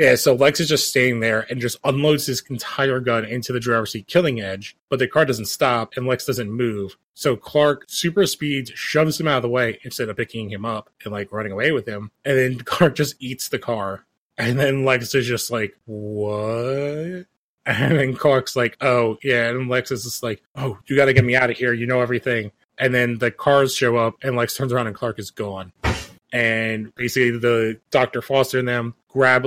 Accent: American